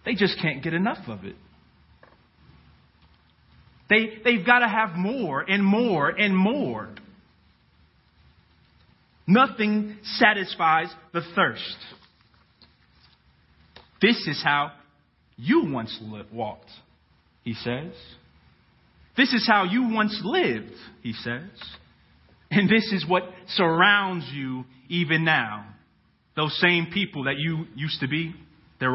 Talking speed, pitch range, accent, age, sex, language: 110 wpm, 135-185 Hz, American, 40-59, male, English